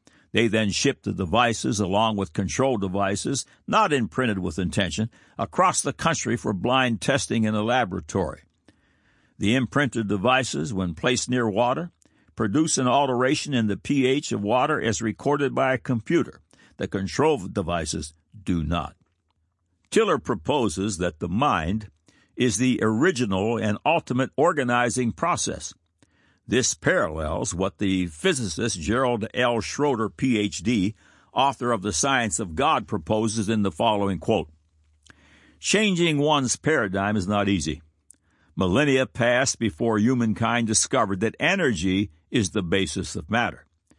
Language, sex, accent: English, male, American